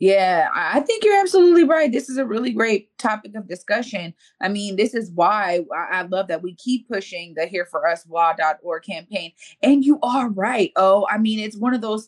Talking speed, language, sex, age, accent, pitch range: 195 wpm, English, female, 30-49, American, 195-245 Hz